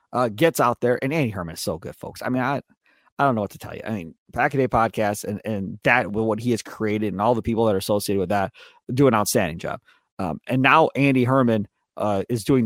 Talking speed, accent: 255 wpm, American